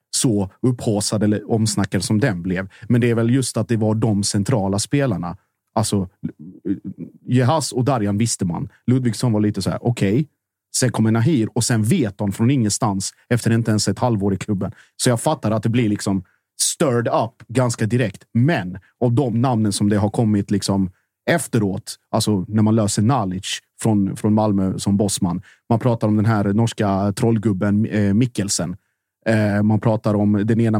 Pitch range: 100-120 Hz